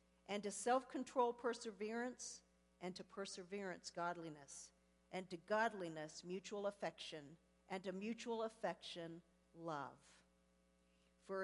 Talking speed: 100 wpm